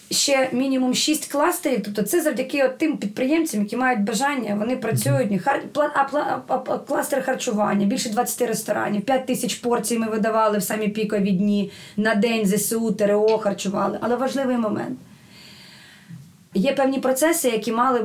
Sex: female